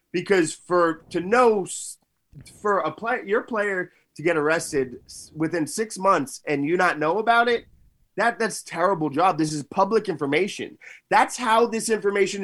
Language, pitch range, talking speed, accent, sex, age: English, 150-220 Hz, 165 wpm, American, male, 30-49